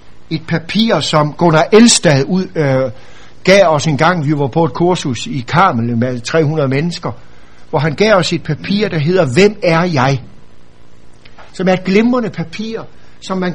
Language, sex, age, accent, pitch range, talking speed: Danish, male, 60-79, native, 140-195 Hz, 170 wpm